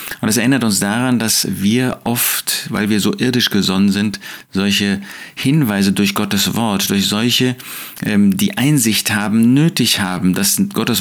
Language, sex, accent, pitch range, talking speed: German, male, German, 105-160 Hz, 160 wpm